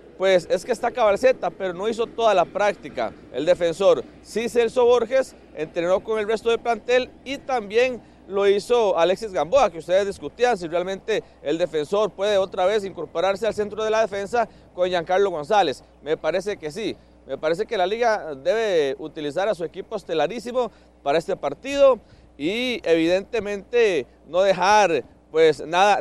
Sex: male